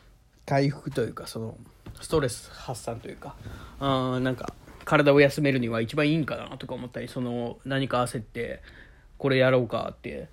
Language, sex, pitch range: Japanese, male, 120-145 Hz